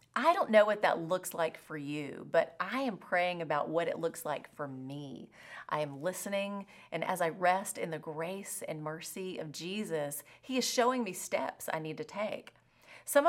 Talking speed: 200 wpm